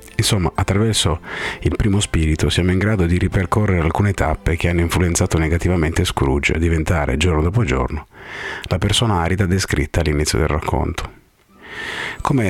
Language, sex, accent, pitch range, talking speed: Italian, male, native, 85-100 Hz, 145 wpm